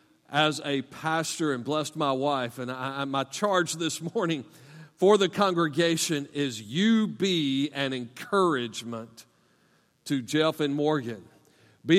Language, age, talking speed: English, 40-59, 130 wpm